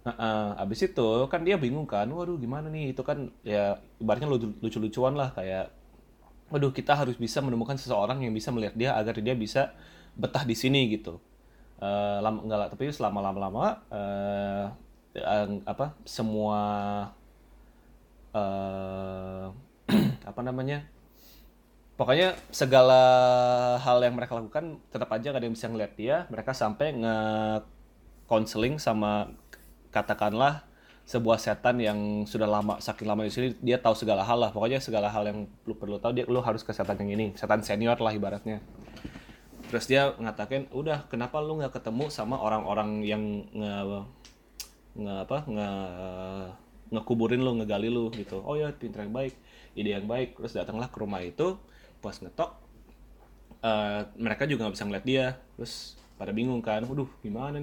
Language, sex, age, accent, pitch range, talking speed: Indonesian, male, 20-39, native, 105-130 Hz, 155 wpm